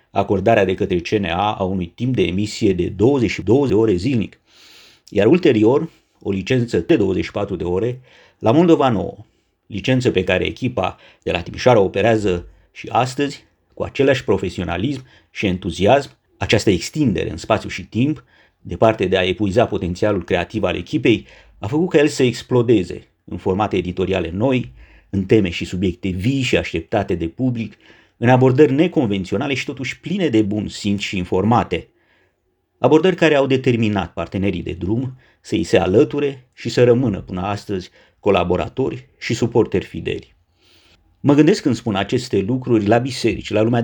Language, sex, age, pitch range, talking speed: Romanian, male, 50-69, 95-130 Hz, 155 wpm